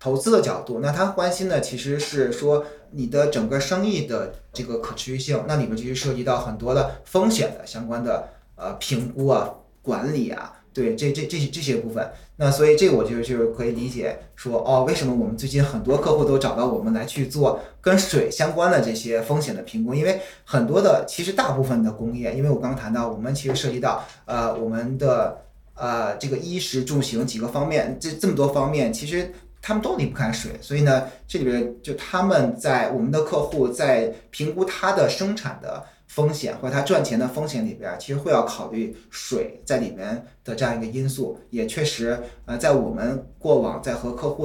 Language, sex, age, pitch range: Chinese, male, 20-39, 120-150 Hz